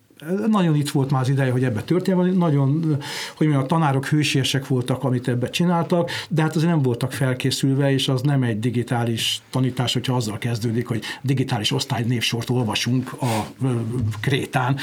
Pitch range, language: 125-150 Hz, Hungarian